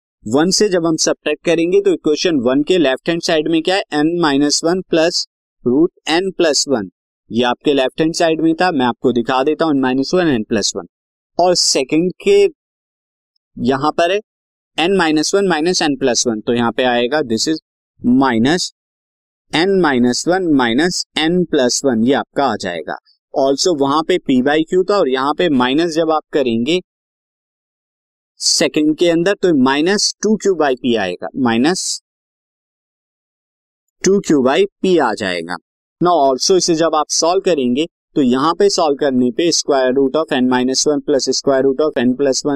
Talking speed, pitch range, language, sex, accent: 155 wpm, 130-170 Hz, Hindi, male, native